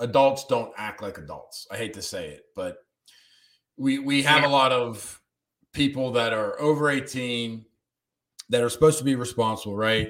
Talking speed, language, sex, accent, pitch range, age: 170 wpm, English, male, American, 110-140 Hz, 40-59